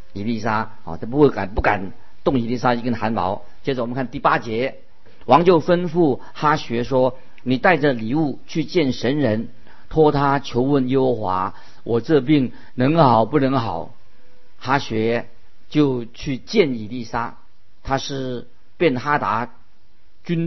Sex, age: male, 50-69